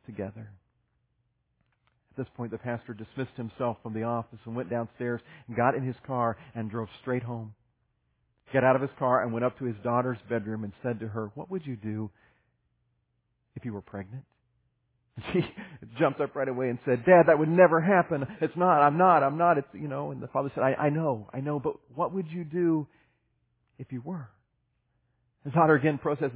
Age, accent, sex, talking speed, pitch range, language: 40-59, American, male, 205 wpm, 115-135 Hz, English